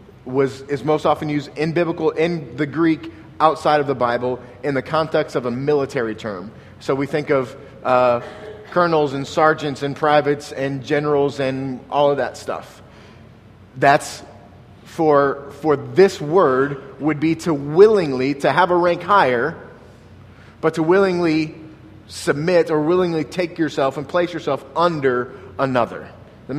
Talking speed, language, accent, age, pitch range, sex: 150 wpm, English, American, 30-49, 120-150 Hz, male